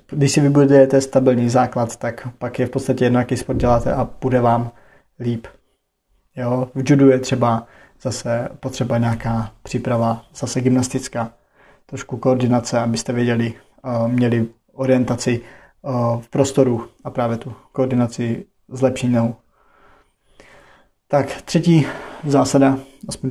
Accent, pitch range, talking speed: native, 120-135 Hz, 115 wpm